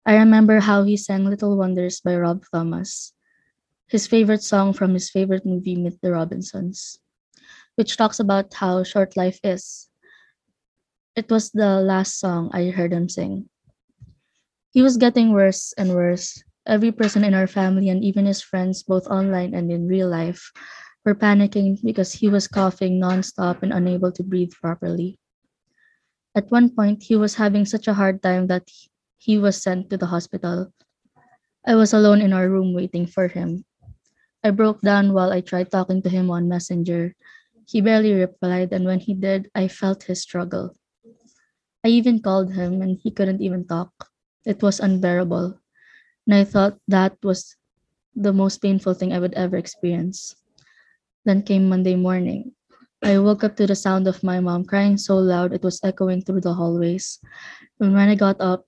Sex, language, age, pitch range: female, English, 20-39, 180-210 Hz